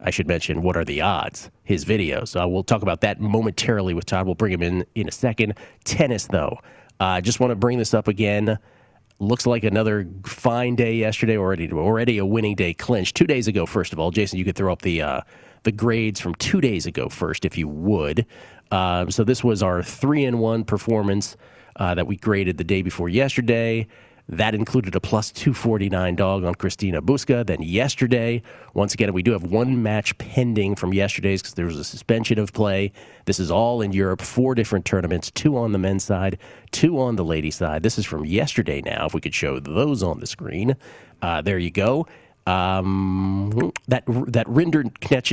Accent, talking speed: American, 205 wpm